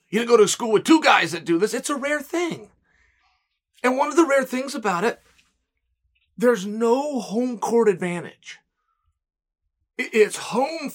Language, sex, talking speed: English, male, 165 wpm